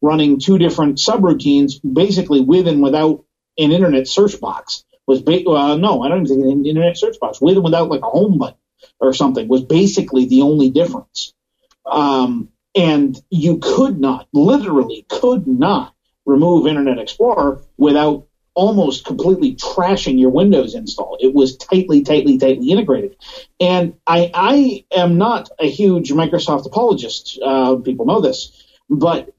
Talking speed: 150 wpm